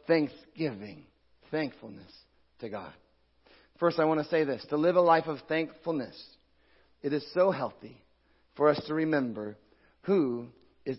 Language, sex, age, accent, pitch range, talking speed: English, male, 40-59, American, 145-205 Hz, 140 wpm